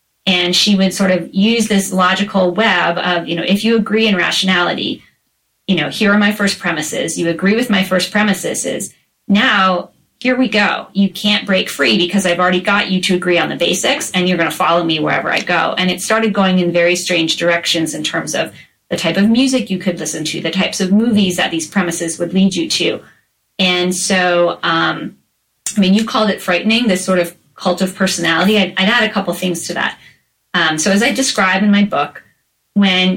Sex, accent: female, American